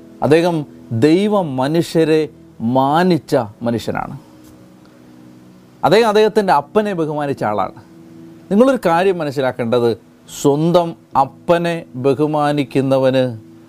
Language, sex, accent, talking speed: Malayalam, male, native, 70 wpm